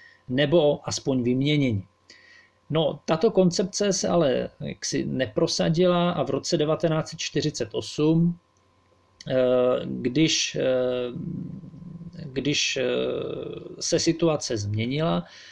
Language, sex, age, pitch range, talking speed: Slovak, male, 40-59, 125-170 Hz, 75 wpm